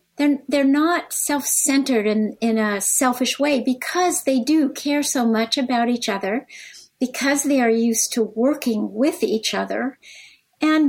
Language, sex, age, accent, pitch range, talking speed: English, female, 50-69, American, 220-270 Hz, 155 wpm